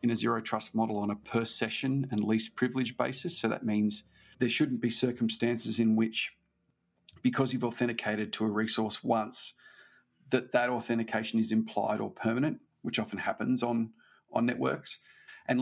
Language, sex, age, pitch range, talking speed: English, male, 40-59, 110-130 Hz, 165 wpm